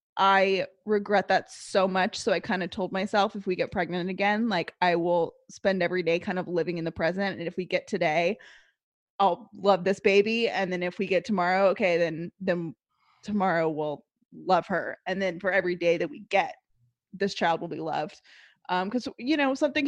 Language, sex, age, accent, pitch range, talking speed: English, female, 20-39, American, 180-230 Hz, 205 wpm